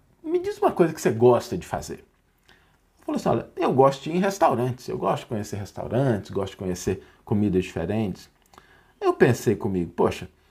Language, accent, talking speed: Portuguese, Brazilian, 185 wpm